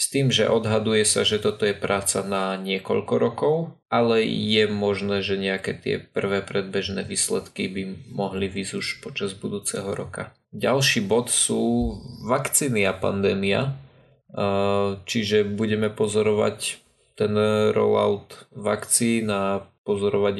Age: 20-39